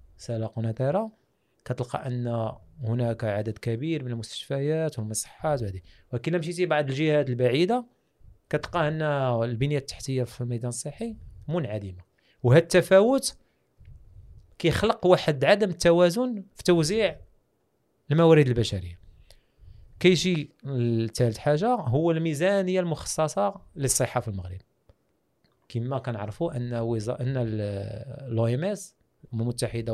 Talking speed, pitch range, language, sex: 110 wpm, 115-165 Hz, Dutch, male